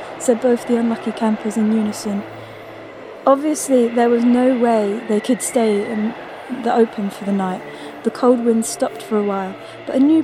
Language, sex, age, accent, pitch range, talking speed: English, female, 20-39, British, 220-280 Hz, 180 wpm